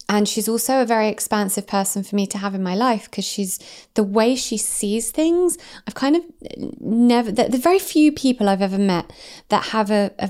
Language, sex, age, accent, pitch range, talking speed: English, female, 20-39, British, 185-230 Hz, 215 wpm